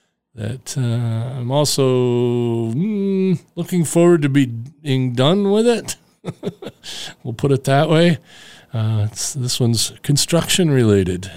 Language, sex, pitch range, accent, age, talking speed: English, male, 115-145 Hz, American, 40-59, 110 wpm